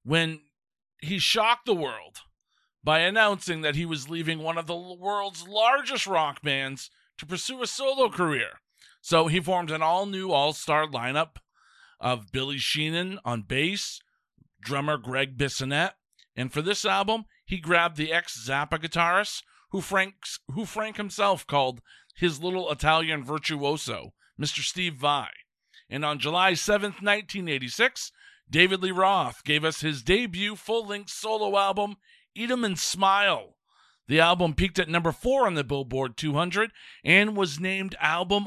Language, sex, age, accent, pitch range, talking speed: English, male, 40-59, American, 145-195 Hz, 145 wpm